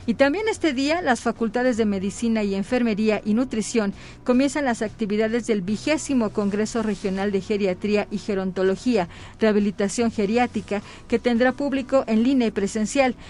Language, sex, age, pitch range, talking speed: Spanish, female, 40-59, 205-240 Hz, 145 wpm